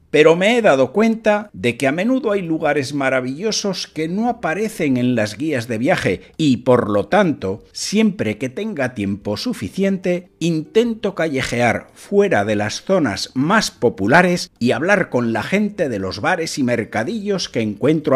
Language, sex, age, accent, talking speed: Spanish, male, 50-69, Spanish, 160 wpm